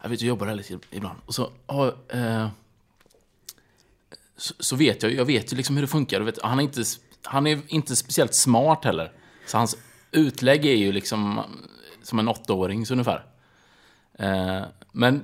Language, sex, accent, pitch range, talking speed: Swedish, male, Norwegian, 100-140 Hz, 175 wpm